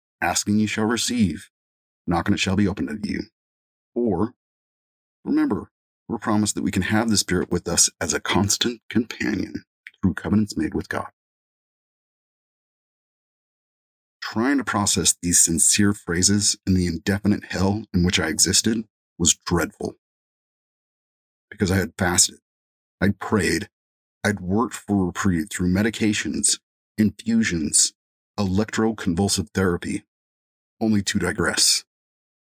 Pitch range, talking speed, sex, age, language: 90-105 Hz, 120 wpm, male, 40-59, English